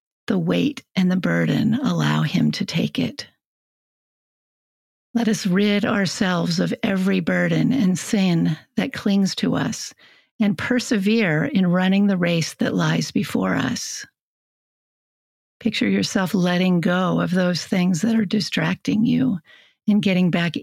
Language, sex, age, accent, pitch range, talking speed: English, female, 50-69, American, 180-220 Hz, 135 wpm